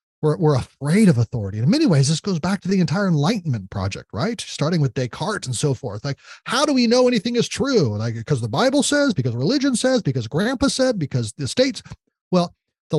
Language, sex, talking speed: English, male, 215 wpm